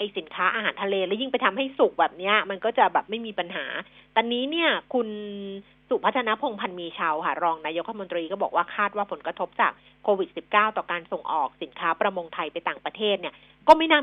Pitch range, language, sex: 180-235 Hz, Thai, female